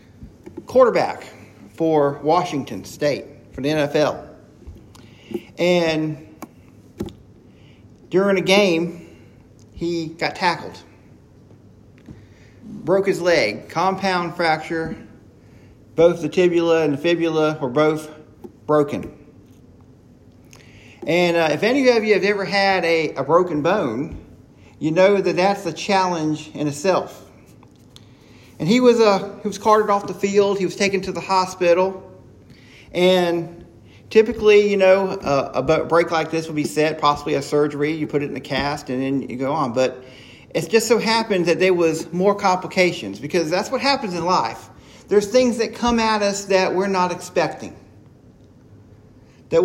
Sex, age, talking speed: male, 40-59, 145 wpm